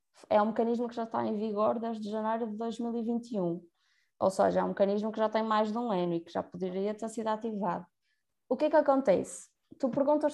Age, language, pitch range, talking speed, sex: 20-39, Portuguese, 195-255 Hz, 220 wpm, female